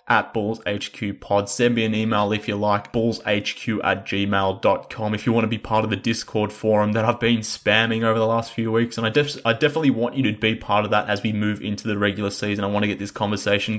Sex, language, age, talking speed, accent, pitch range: male, English, 20-39, 255 wpm, Australian, 105-115 Hz